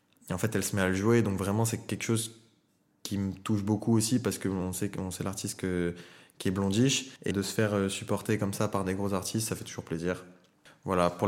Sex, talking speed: male, 245 wpm